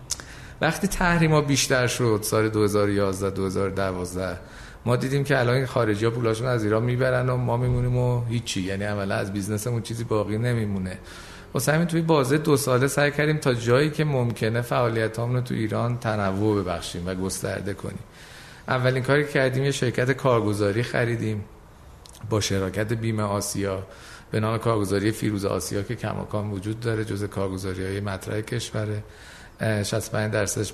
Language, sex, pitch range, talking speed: Persian, male, 100-125 Hz, 145 wpm